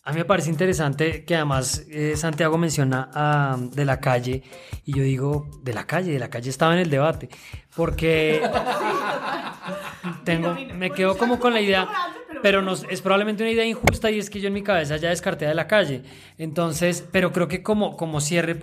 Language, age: Spanish, 20-39